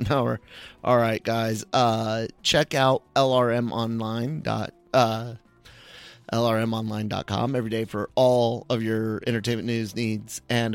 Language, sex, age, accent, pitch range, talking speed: English, male, 30-49, American, 110-125 Hz, 125 wpm